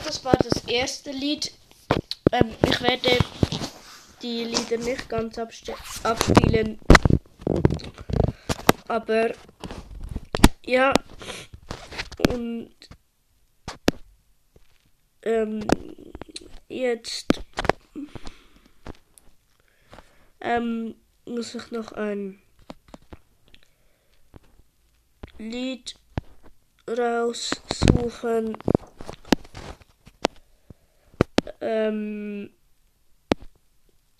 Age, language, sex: 20-39, German, female